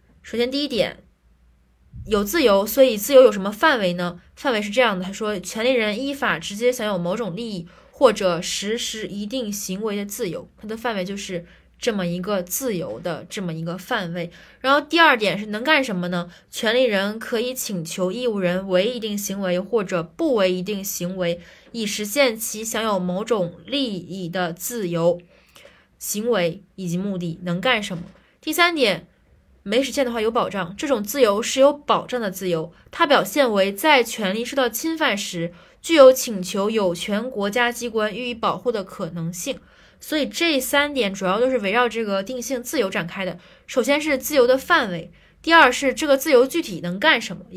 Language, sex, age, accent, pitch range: Chinese, female, 20-39, native, 185-255 Hz